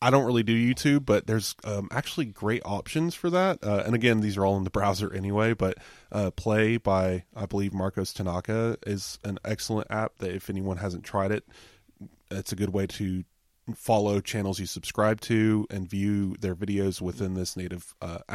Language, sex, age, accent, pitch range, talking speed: English, male, 20-39, American, 95-115 Hz, 195 wpm